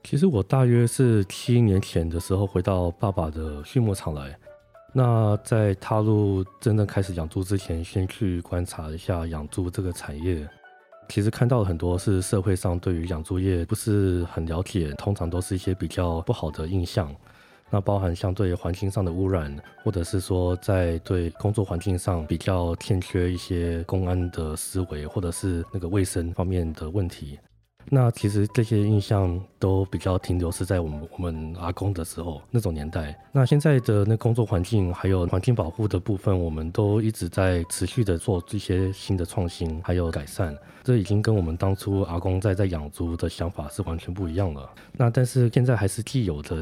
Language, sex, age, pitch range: Chinese, male, 20-39, 85-105 Hz